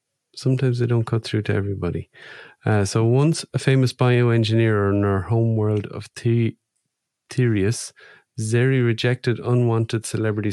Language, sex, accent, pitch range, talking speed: English, male, Irish, 100-120 Hz, 130 wpm